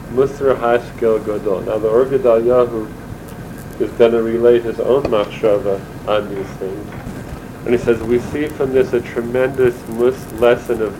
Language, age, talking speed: English, 40-59, 145 wpm